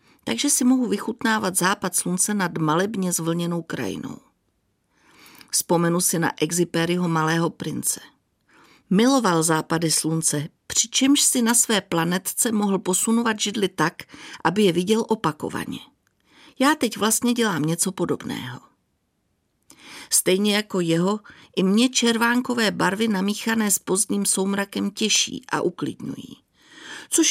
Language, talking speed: Czech, 115 wpm